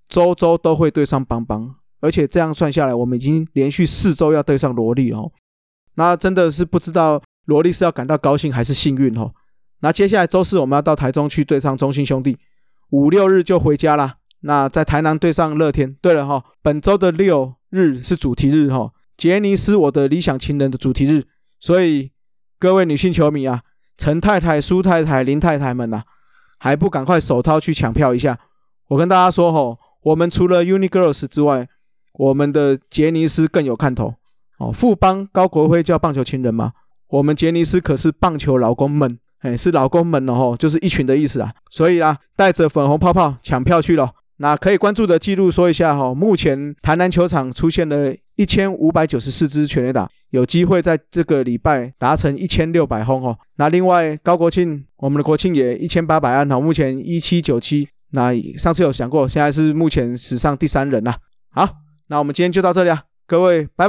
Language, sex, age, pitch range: Chinese, male, 20-39, 135-175 Hz